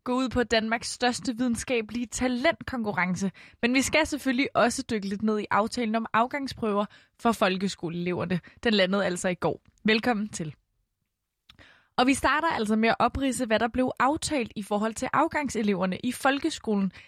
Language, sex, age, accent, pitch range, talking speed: Danish, female, 20-39, native, 200-260 Hz, 160 wpm